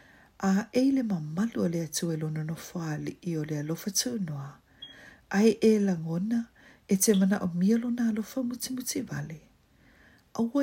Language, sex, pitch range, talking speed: English, female, 170-230 Hz, 135 wpm